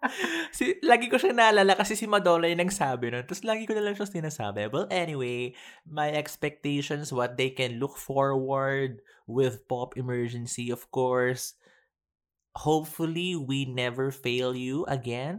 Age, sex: 20-39, male